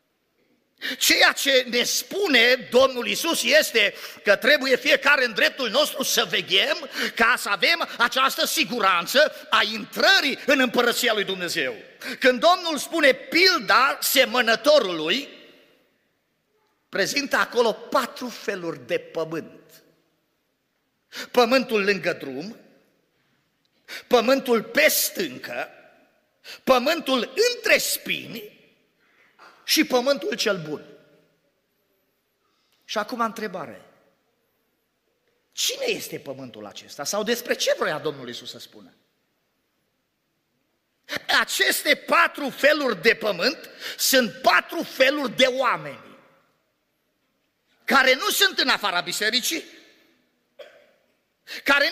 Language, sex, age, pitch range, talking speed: Romanian, male, 50-69, 210-295 Hz, 95 wpm